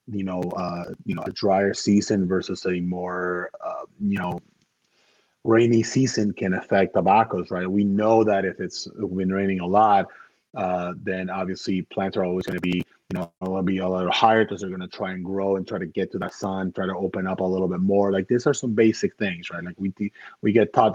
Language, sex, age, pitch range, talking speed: English, male, 30-49, 90-105 Hz, 225 wpm